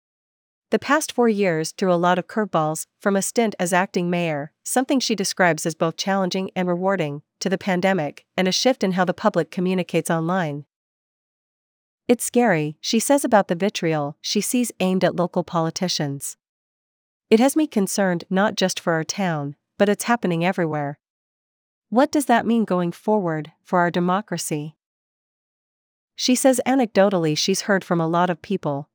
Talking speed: 165 wpm